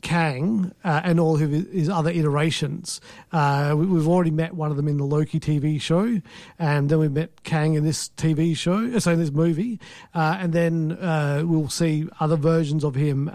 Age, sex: 50-69, male